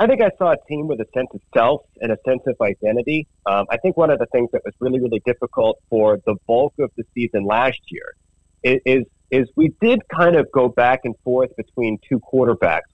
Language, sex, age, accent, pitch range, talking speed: English, male, 30-49, American, 110-135 Hz, 225 wpm